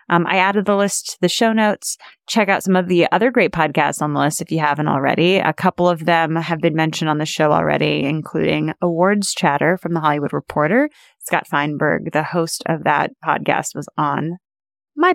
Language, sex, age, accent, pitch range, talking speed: English, female, 30-49, American, 160-215 Hz, 205 wpm